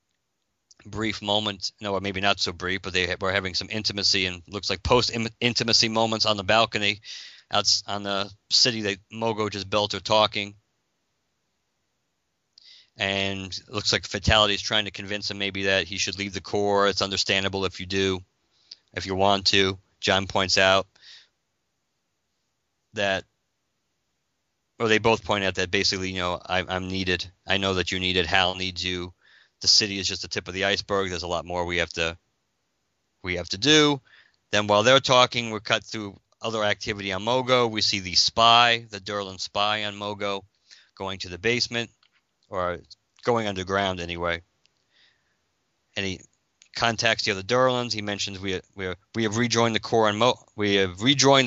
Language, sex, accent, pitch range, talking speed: English, male, American, 95-110 Hz, 180 wpm